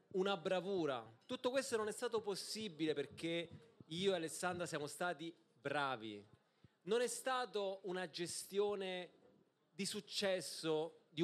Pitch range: 150-200 Hz